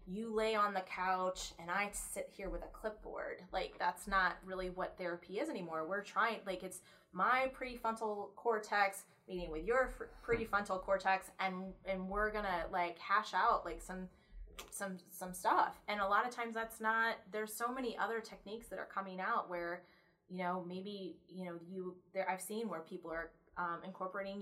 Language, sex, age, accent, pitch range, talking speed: English, female, 20-39, American, 180-205 Hz, 185 wpm